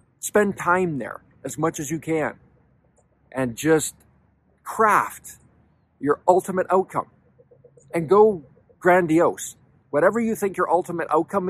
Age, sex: 50-69, male